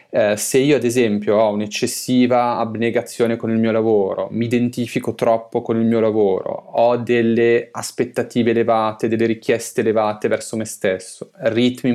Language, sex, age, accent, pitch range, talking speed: Italian, male, 20-39, native, 105-125 Hz, 150 wpm